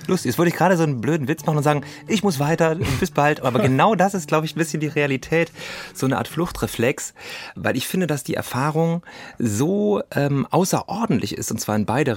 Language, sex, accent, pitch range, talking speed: German, male, German, 115-155 Hz, 225 wpm